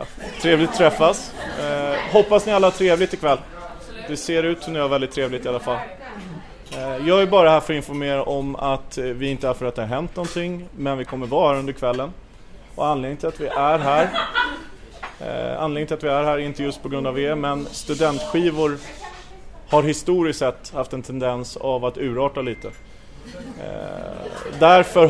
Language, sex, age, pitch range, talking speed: Swedish, male, 30-49, 135-175 Hz, 185 wpm